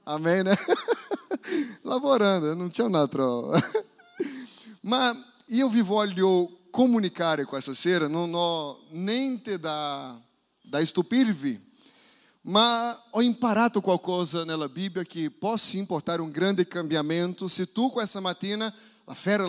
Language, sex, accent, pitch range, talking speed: Italian, male, Brazilian, 180-230 Hz, 115 wpm